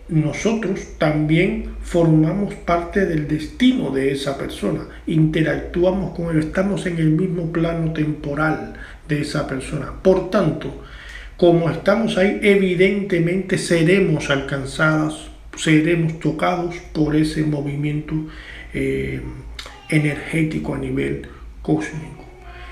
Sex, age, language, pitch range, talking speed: male, 50-69, Spanish, 150-185 Hz, 105 wpm